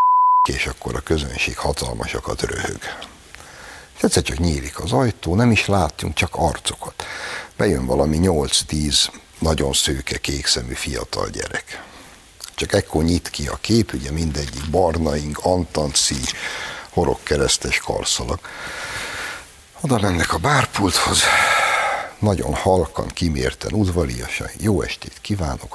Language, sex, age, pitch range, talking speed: Hungarian, male, 60-79, 70-90 Hz, 110 wpm